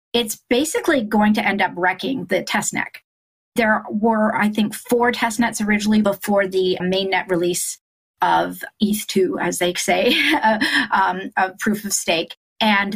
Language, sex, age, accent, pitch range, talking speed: English, female, 30-49, American, 180-220 Hz, 145 wpm